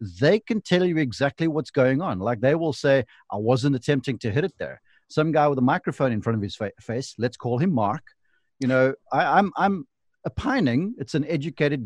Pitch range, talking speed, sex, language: 115-150 Hz, 220 wpm, male, English